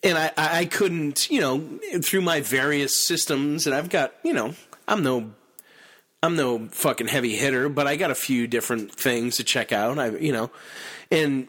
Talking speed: 190 wpm